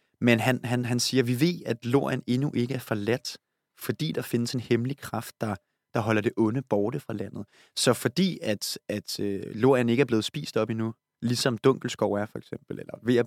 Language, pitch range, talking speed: Danish, 105-125 Hz, 215 wpm